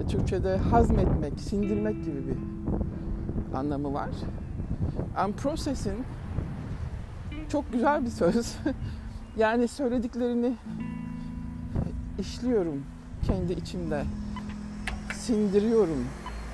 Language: Turkish